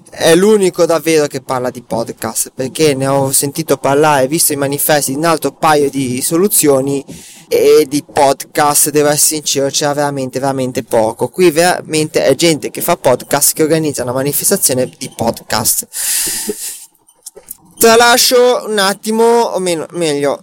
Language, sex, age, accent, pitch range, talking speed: Italian, male, 20-39, native, 145-175 Hz, 140 wpm